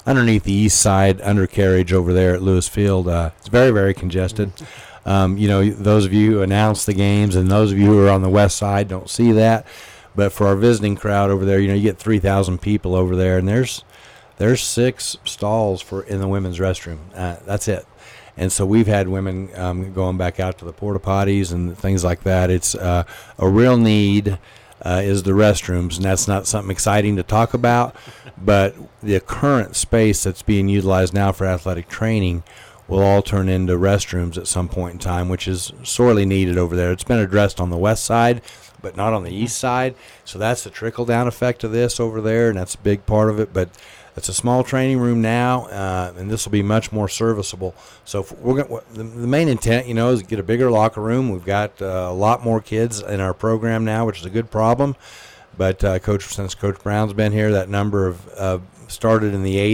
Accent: American